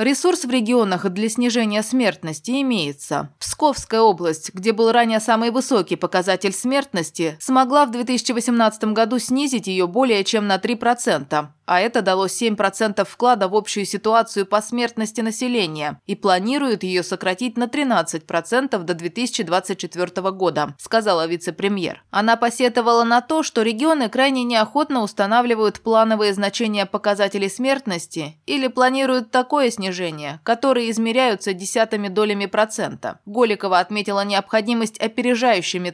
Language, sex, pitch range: Russian, female, 195-245 Hz